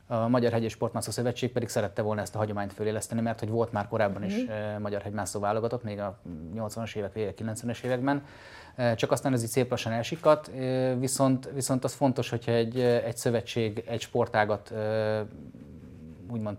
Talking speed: 160 wpm